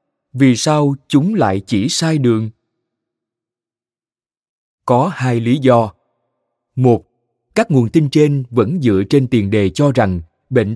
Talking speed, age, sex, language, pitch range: 135 wpm, 20-39, male, Vietnamese, 110-140 Hz